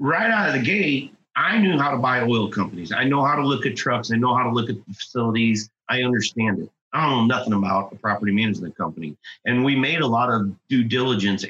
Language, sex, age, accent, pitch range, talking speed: English, male, 40-59, American, 105-135 Hz, 245 wpm